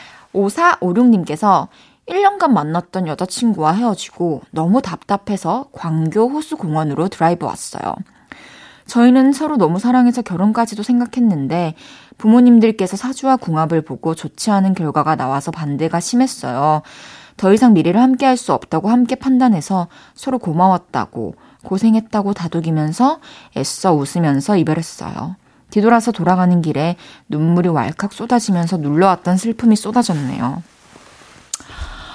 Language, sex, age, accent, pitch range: Korean, female, 20-39, native, 170-230 Hz